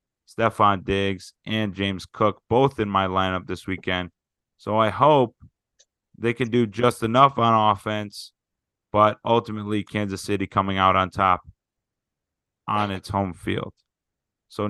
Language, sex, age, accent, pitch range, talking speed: English, male, 30-49, American, 95-115 Hz, 140 wpm